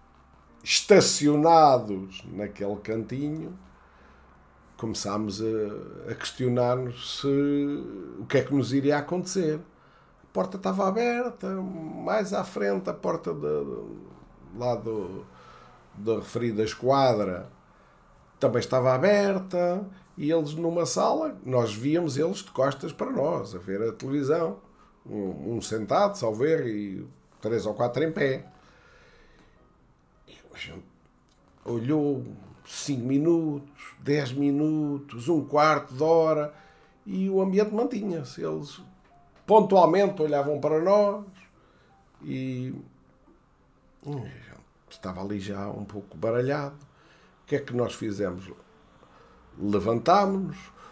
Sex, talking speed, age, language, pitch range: male, 115 wpm, 50-69, Portuguese, 105-160 Hz